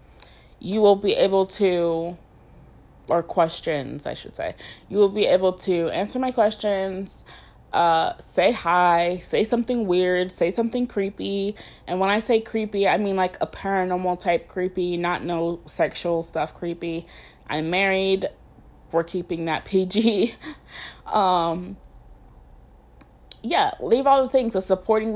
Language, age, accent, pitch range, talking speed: English, 20-39, American, 175-220 Hz, 140 wpm